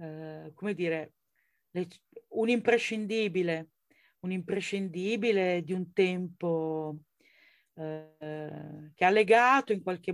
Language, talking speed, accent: Italian, 100 wpm, native